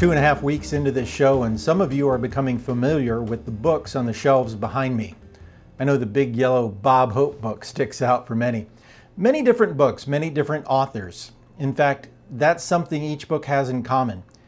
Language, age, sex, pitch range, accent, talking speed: English, 40-59, male, 115-145 Hz, American, 205 wpm